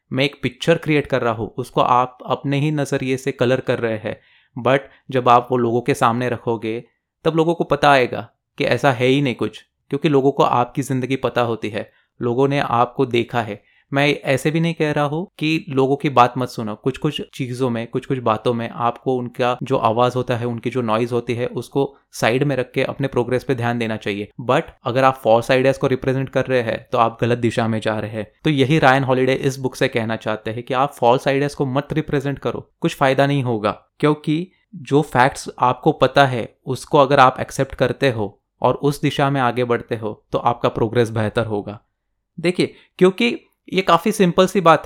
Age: 20-39